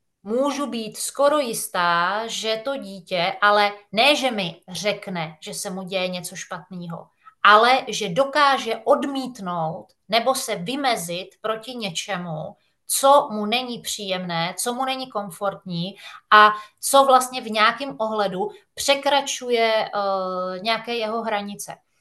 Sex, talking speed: female, 125 wpm